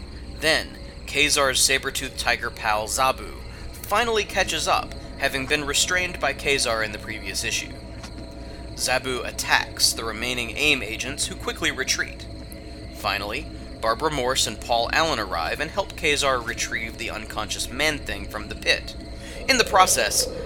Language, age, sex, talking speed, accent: English, 30-49, male, 140 wpm, American